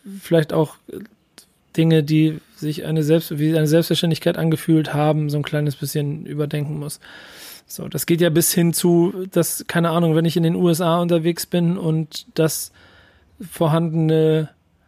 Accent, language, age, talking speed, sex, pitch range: German, German, 40-59, 155 wpm, male, 150-170 Hz